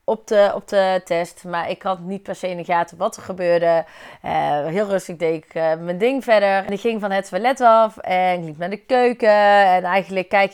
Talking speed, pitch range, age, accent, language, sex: 235 wpm, 180-230 Hz, 30-49, Dutch, Dutch, female